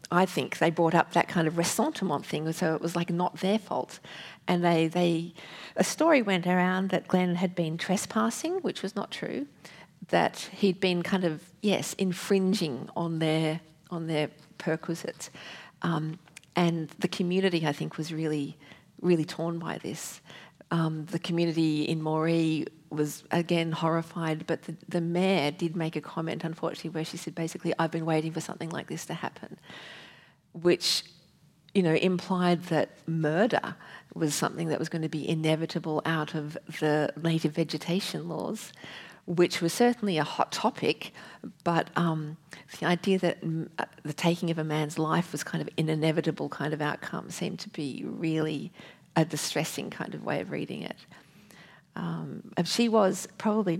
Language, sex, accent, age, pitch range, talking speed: English, female, Australian, 40-59, 160-180 Hz, 165 wpm